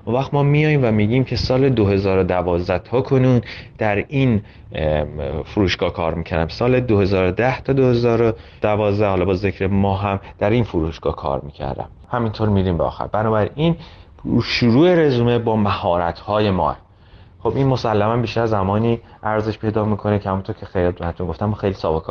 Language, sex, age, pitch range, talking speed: Persian, male, 30-49, 90-125 Hz, 165 wpm